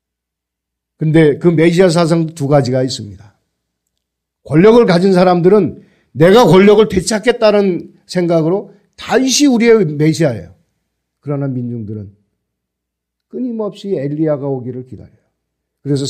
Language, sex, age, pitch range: Korean, male, 40-59, 105-175 Hz